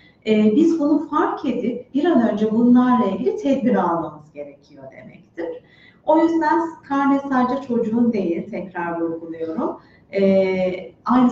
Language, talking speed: Turkish, 115 wpm